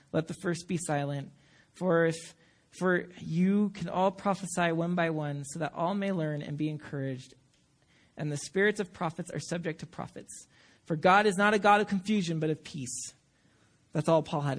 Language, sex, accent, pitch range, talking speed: English, male, American, 150-190 Hz, 195 wpm